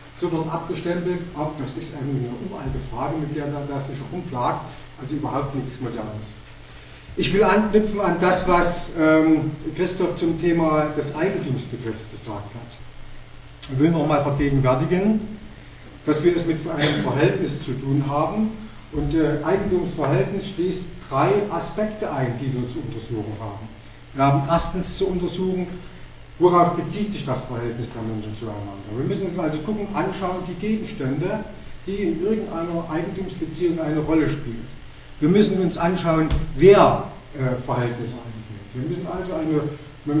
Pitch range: 135-175 Hz